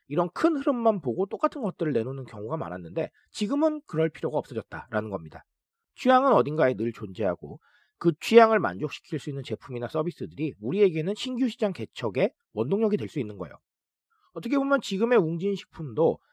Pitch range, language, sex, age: 135-225 Hz, Korean, male, 40-59